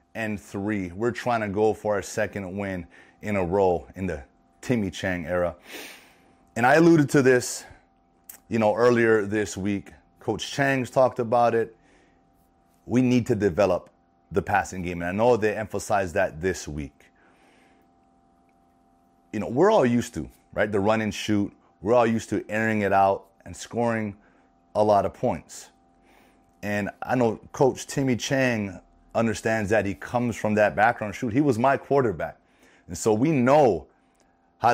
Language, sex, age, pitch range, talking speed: English, male, 30-49, 85-120 Hz, 165 wpm